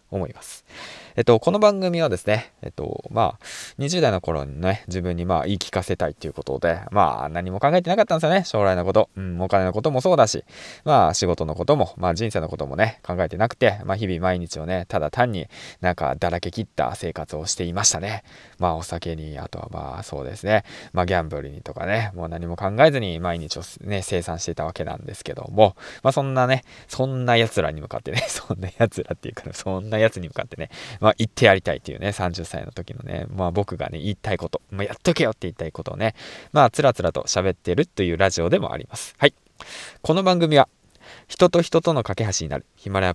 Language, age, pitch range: Japanese, 20-39, 85-115 Hz